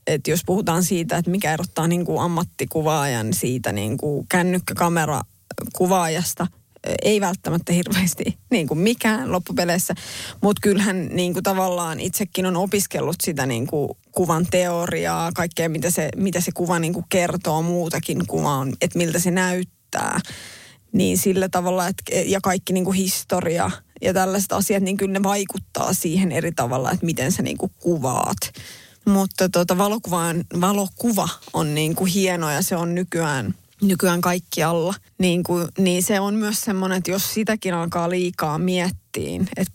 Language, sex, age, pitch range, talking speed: Finnish, female, 20-39, 165-190 Hz, 140 wpm